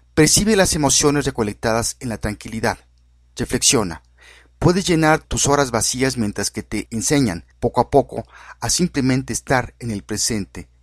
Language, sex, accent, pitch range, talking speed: Spanish, male, Mexican, 100-135 Hz, 145 wpm